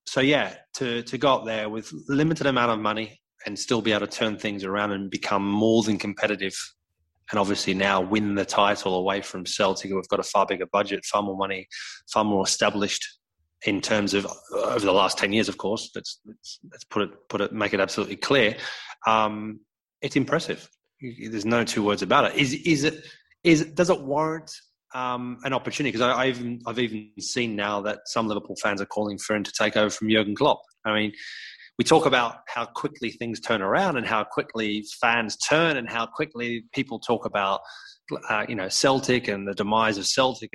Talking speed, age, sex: 205 wpm, 20-39, male